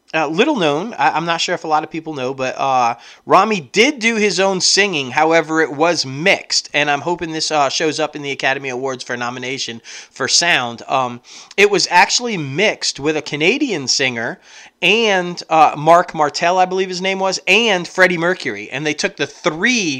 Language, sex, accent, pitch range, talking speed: English, male, American, 130-175 Hz, 195 wpm